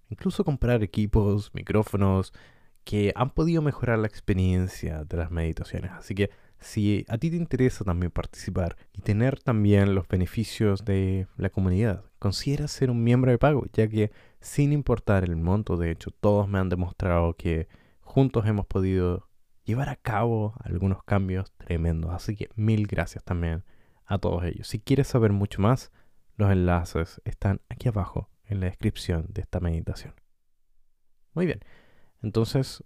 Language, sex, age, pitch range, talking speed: Spanish, male, 20-39, 90-120 Hz, 155 wpm